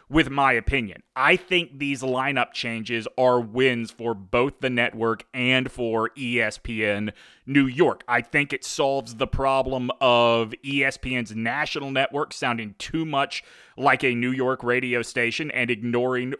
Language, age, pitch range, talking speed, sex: English, 30-49, 115-140 Hz, 145 wpm, male